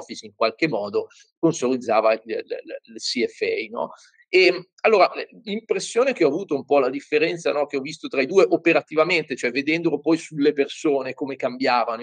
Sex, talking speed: male, 160 wpm